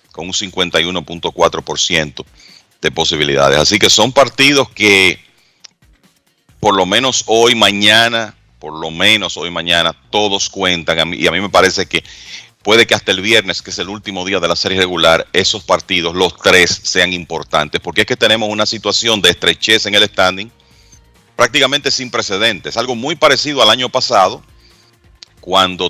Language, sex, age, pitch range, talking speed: Spanish, male, 40-59, 90-110 Hz, 160 wpm